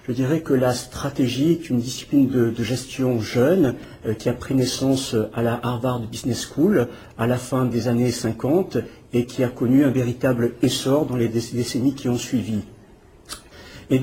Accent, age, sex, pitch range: French, 50-69, male, 120-140 Hz